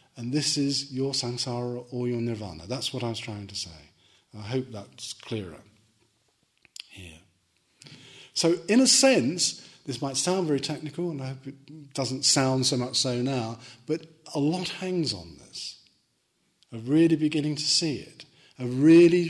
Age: 40-59